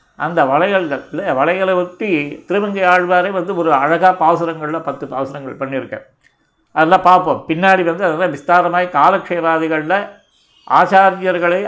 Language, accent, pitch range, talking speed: Tamil, native, 165-190 Hz, 110 wpm